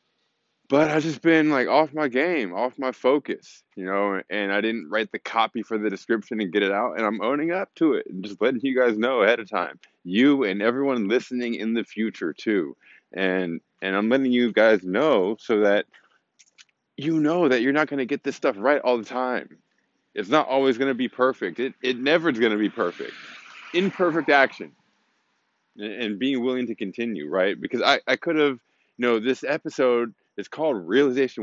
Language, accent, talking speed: English, American, 205 wpm